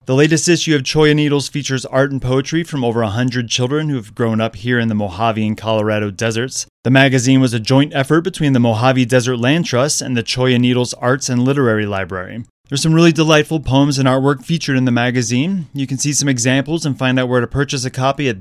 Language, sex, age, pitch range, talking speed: English, male, 30-49, 120-145 Hz, 230 wpm